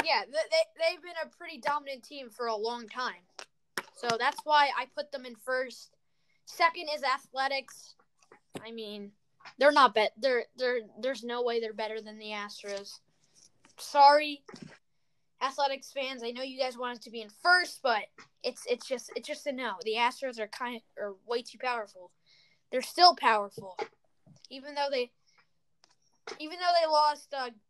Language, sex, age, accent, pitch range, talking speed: English, female, 10-29, American, 225-290 Hz, 170 wpm